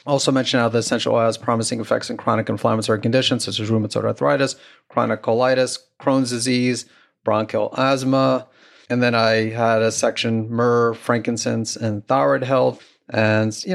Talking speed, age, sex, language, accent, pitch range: 155 wpm, 30-49, male, English, American, 115-130 Hz